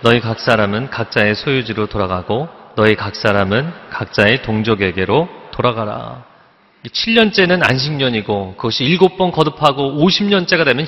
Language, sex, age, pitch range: Korean, male, 40-59, 125-190 Hz